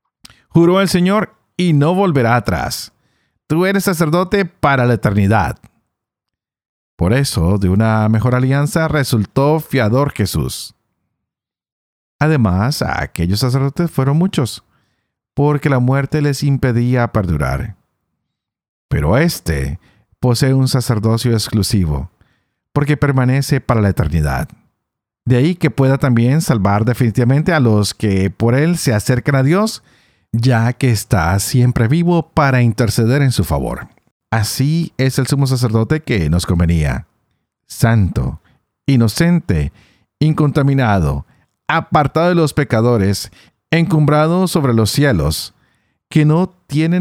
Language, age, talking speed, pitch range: Spanish, 50-69, 115 wpm, 110-155 Hz